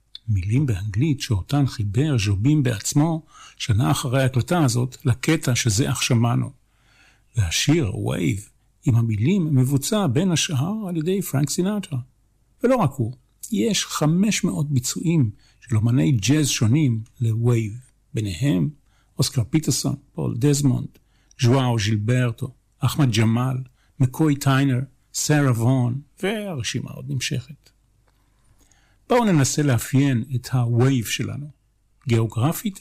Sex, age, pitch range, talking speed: male, 50-69, 115-145 Hz, 110 wpm